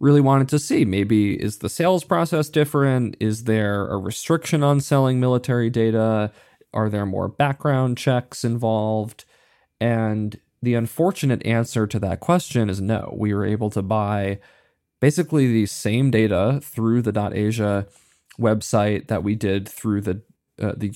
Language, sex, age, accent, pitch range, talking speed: English, male, 20-39, American, 105-125 Hz, 150 wpm